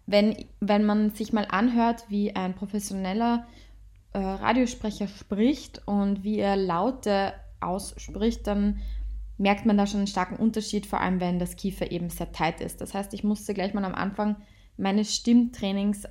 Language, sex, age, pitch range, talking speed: German, female, 20-39, 185-215 Hz, 165 wpm